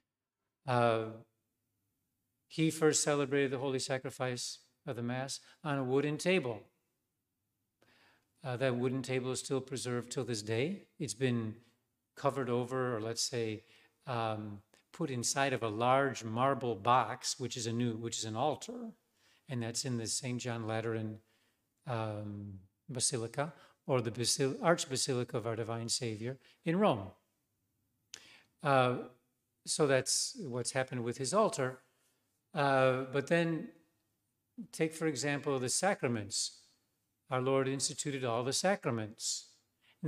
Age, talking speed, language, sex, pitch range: 40-59, 135 wpm, English, male, 115-145 Hz